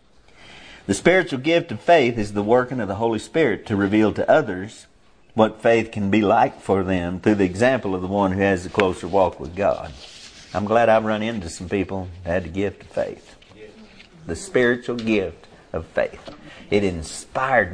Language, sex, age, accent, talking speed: English, male, 50-69, American, 190 wpm